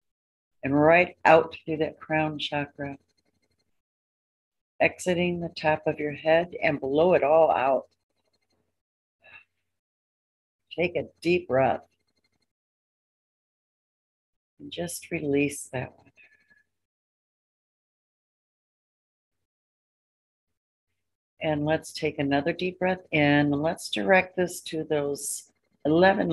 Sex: female